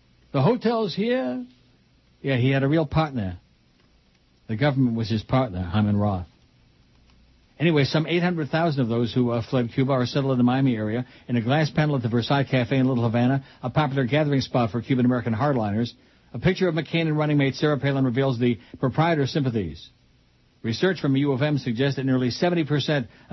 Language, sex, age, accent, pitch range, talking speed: English, male, 60-79, American, 120-145 Hz, 180 wpm